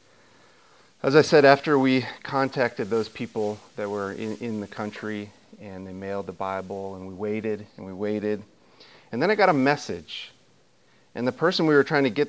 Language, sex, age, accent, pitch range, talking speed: English, male, 30-49, American, 105-140 Hz, 190 wpm